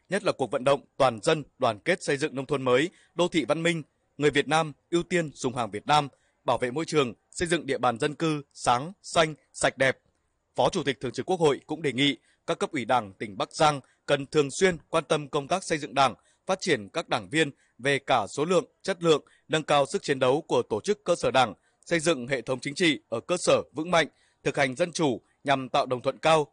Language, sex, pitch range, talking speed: Vietnamese, male, 130-160 Hz, 250 wpm